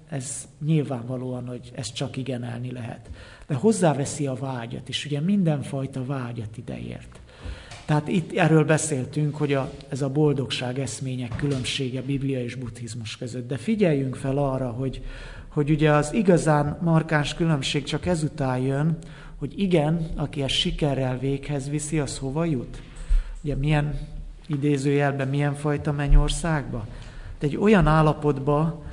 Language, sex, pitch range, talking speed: English, male, 130-155 Hz, 135 wpm